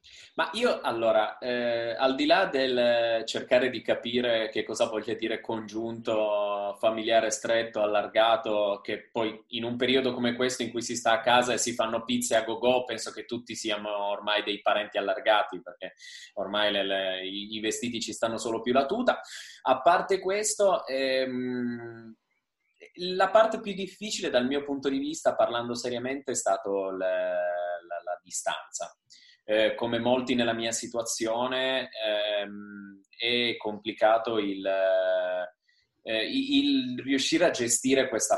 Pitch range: 110-135 Hz